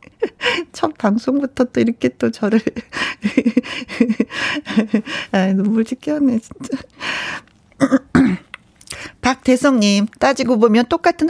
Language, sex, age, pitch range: Korean, female, 40-59, 185-255 Hz